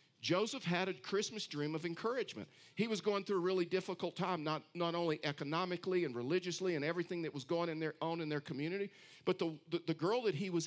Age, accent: 50-69, American